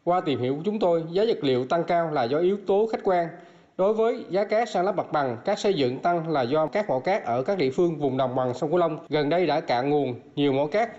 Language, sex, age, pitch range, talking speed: Vietnamese, male, 20-39, 145-195 Hz, 285 wpm